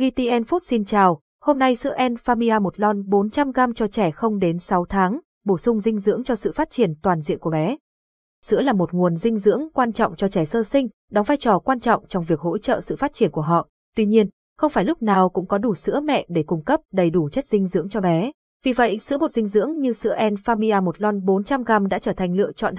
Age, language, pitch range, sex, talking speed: 20-39, Vietnamese, 185-240 Hz, female, 245 wpm